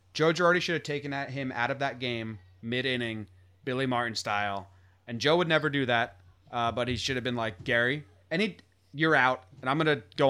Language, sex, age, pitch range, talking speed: English, male, 30-49, 110-145 Hz, 215 wpm